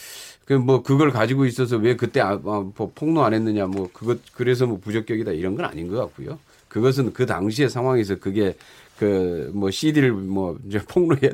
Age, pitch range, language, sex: 40-59, 100-145 Hz, Korean, male